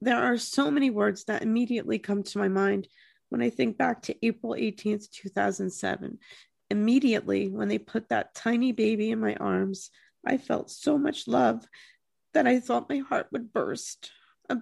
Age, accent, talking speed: 40-59, American, 170 wpm